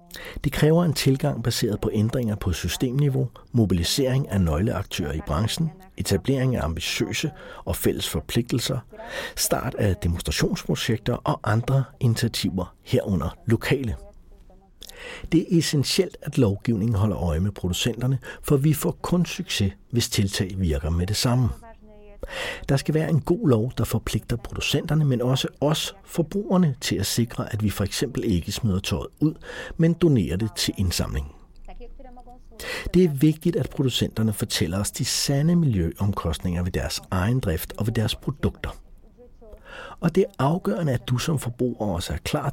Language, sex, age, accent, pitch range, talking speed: Danish, male, 60-79, native, 100-150 Hz, 150 wpm